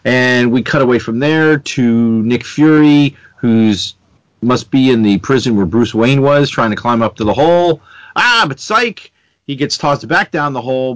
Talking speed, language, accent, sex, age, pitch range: 195 wpm, English, American, male, 40-59, 105-150 Hz